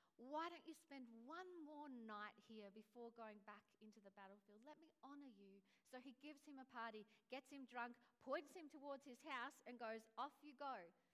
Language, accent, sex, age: English, Australian, female, 40-59